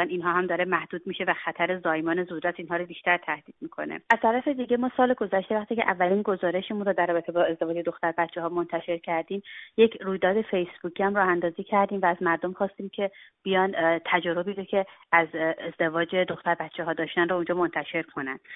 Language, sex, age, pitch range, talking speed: Persian, female, 30-49, 170-190 Hz, 190 wpm